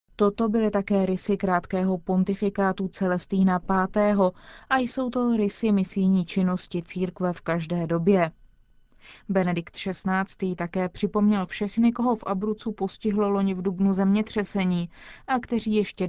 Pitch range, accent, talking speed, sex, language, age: 180-210 Hz, native, 125 wpm, female, Czech, 20-39